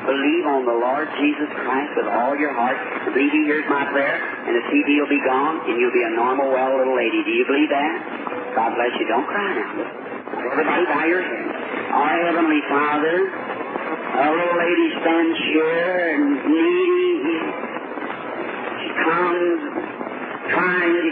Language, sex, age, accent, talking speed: English, male, 50-69, American, 160 wpm